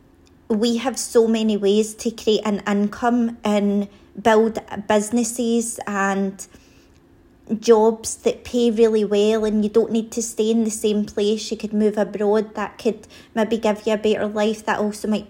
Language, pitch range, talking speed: English, 210-230 Hz, 170 wpm